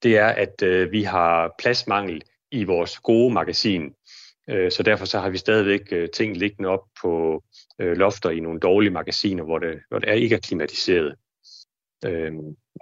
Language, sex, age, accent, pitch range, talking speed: Danish, male, 30-49, native, 95-120 Hz, 180 wpm